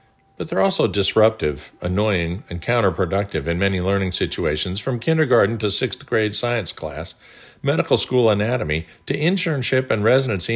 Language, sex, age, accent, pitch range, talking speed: English, male, 50-69, American, 95-130 Hz, 140 wpm